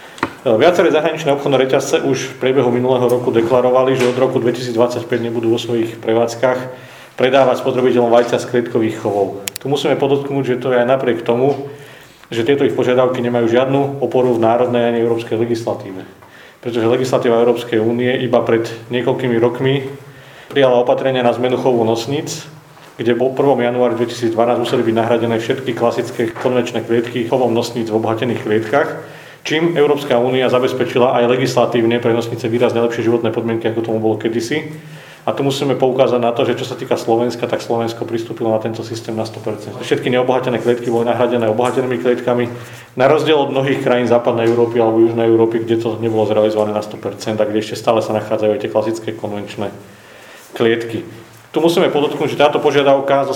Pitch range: 115-130 Hz